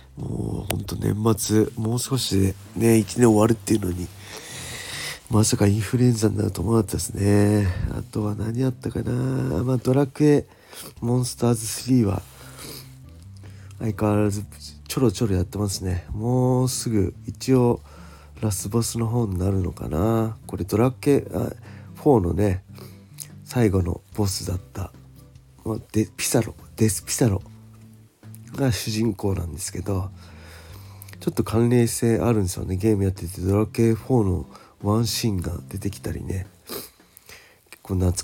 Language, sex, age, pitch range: Japanese, male, 40-59, 95-115 Hz